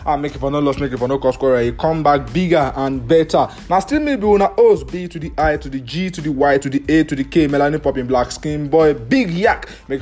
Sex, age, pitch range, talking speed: male, 20-39, 135-185 Hz, 290 wpm